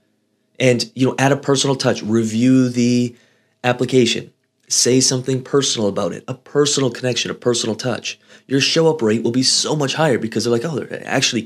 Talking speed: 190 wpm